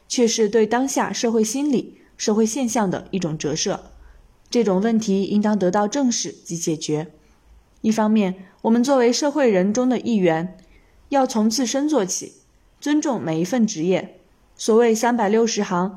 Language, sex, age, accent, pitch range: Chinese, female, 20-39, native, 190-255 Hz